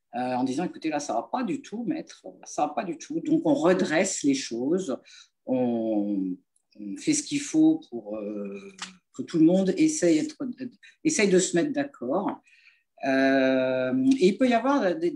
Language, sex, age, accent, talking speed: French, female, 50-69, French, 180 wpm